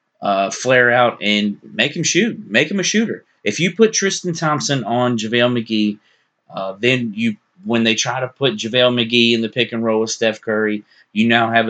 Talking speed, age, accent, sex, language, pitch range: 205 wpm, 30-49, American, male, English, 105-125 Hz